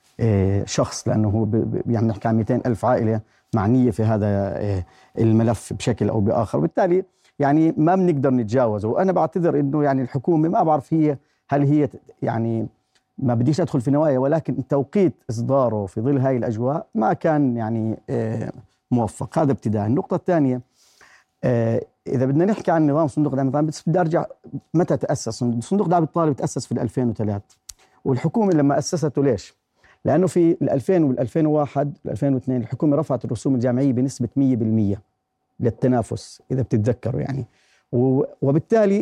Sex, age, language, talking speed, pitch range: male, 40-59, Arabic, 140 wpm, 120-165 Hz